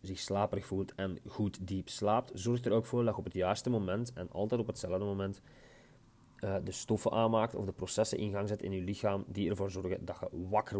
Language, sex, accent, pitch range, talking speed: Dutch, male, Dutch, 95-120 Hz, 230 wpm